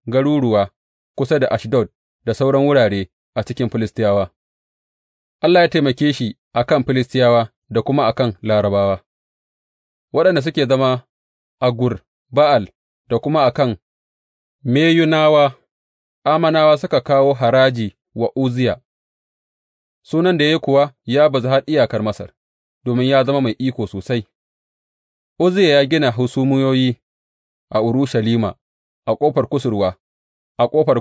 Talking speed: 105 wpm